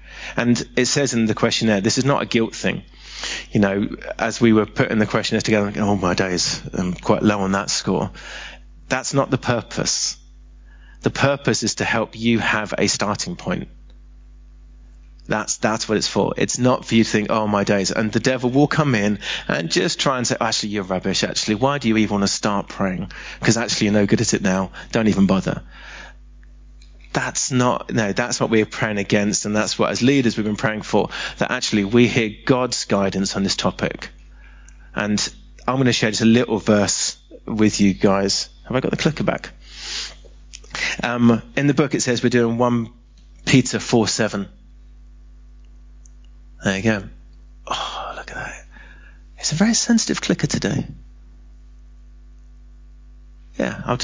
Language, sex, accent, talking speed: English, male, British, 180 wpm